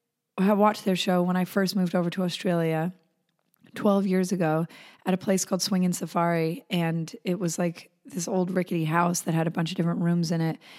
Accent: American